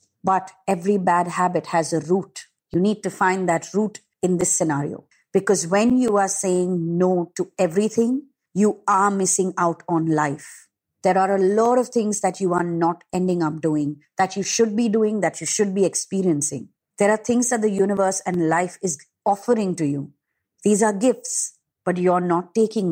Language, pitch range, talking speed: English, 160-210 Hz, 190 wpm